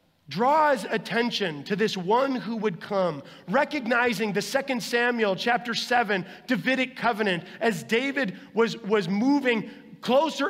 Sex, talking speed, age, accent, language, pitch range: male, 125 wpm, 30-49, American, English, 175-240 Hz